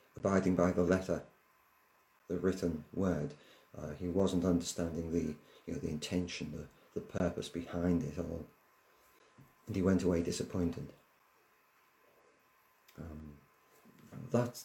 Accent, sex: British, male